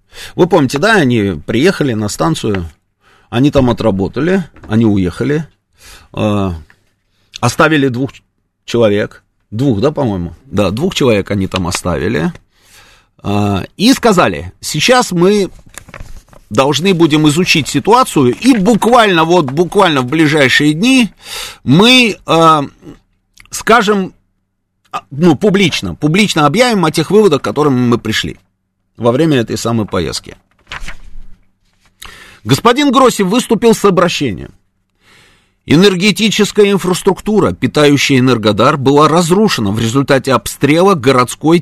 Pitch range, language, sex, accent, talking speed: 100-160 Hz, Russian, male, native, 110 wpm